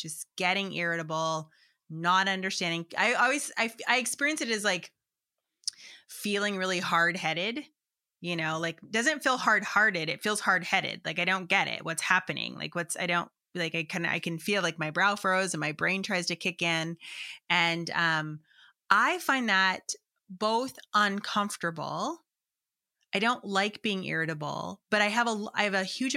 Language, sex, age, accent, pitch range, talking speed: English, female, 20-39, American, 170-225 Hz, 175 wpm